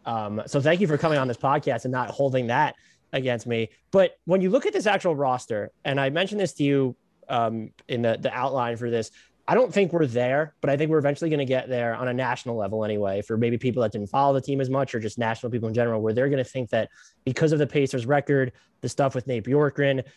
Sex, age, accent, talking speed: male, 20-39, American, 260 wpm